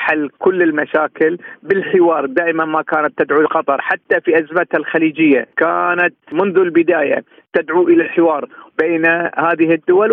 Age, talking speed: 40-59, 130 wpm